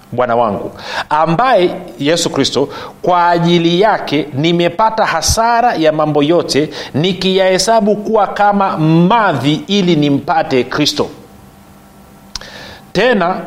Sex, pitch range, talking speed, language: male, 145-195 Hz, 95 wpm, Swahili